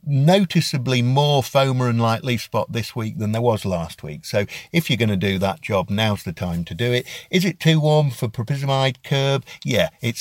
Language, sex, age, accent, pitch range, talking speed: English, male, 50-69, British, 105-150 Hz, 220 wpm